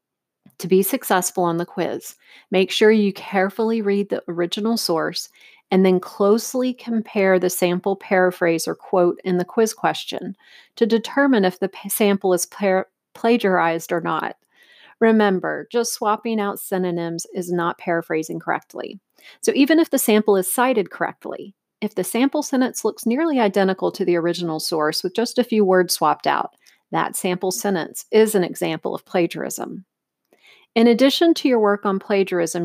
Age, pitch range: 40-59, 180-220 Hz